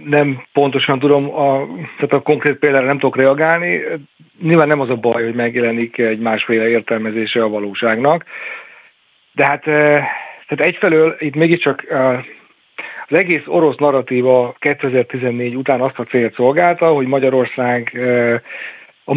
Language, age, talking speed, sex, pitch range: Hungarian, 40-59, 130 wpm, male, 120-145 Hz